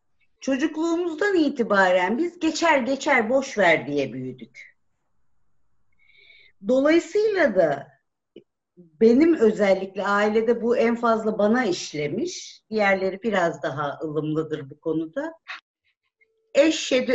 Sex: female